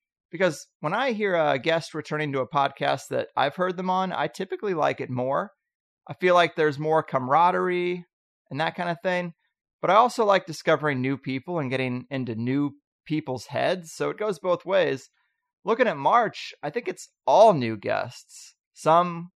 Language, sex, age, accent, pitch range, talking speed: English, male, 30-49, American, 140-185 Hz, 185 wpm